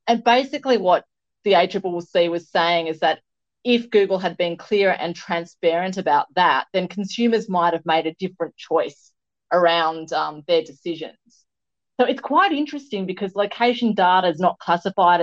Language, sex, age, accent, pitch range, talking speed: English, female, 30-49, Australian, 165-210 Hz, 160 wpm